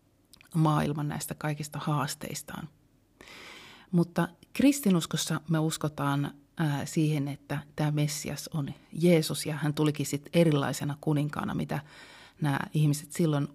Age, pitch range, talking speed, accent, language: 30-49, 145-165 Hz, 110 wpm, native, Finnish